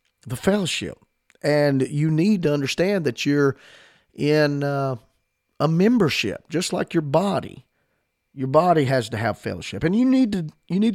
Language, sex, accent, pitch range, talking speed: English, male, American, 115-145 Hz, 160 wpm